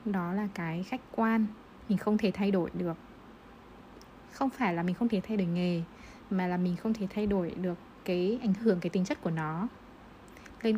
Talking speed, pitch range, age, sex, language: 205 wpm, 185-230 Hz, 20-39, female, Vietnamese